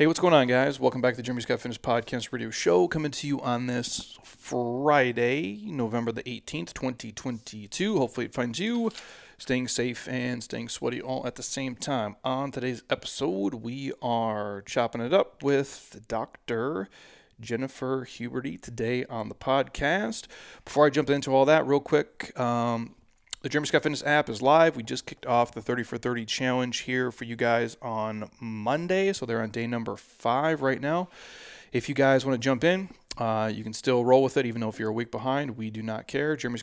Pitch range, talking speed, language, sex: 115-135 Hz, 195 wpm, English, male